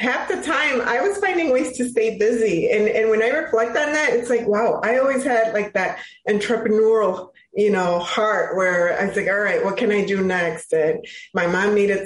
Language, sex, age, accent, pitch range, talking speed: English, female, 20-39, American, 190-245 Hz, 220 wpm